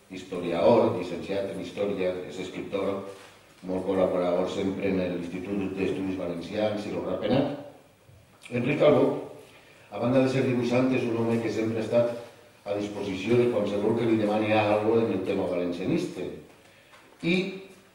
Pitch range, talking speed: 100-130 Hz, 150 wpm